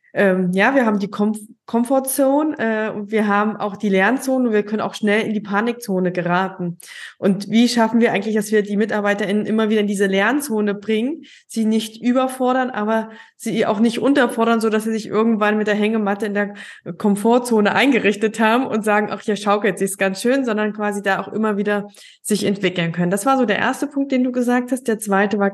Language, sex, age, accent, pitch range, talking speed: German, female, 20-39, German, 200-235 Hz, 210 wpm